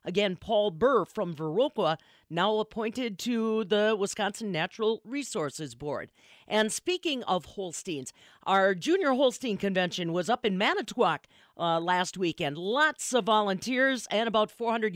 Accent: American